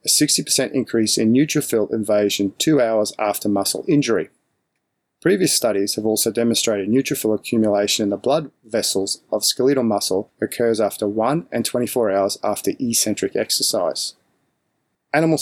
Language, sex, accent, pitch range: English, male, Australian, 105-130 Hz